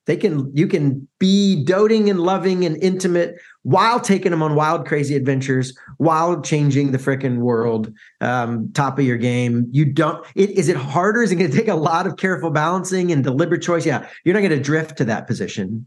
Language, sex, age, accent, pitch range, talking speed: English, male, 40-59, American, 135-175 Hz, 205 wpm